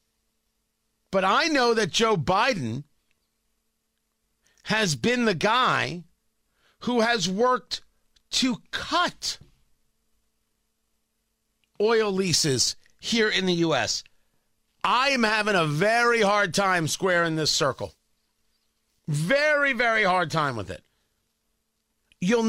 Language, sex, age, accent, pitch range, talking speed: English, male, 50-69, American, 145-220 Hz, 100 wpm